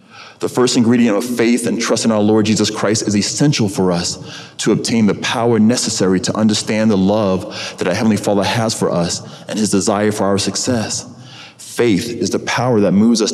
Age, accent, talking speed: 30-49, American, 200 wpm